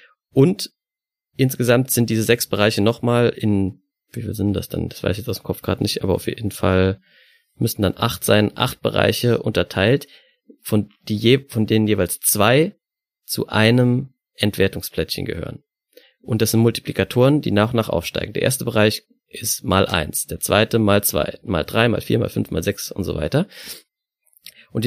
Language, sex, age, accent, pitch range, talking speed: German, male, 30-49, German, 105-135 Hz, 175 wpm